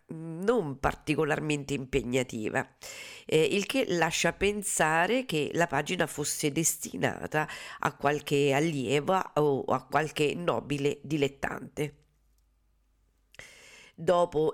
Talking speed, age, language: 90 wpm, 50-69, Italian